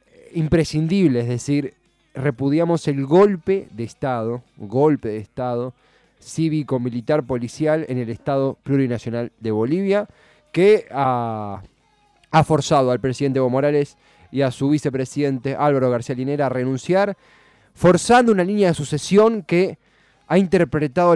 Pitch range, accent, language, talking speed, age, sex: 120-155 Hz, Argentinian, Spanish, 120 wpm, 20-39, male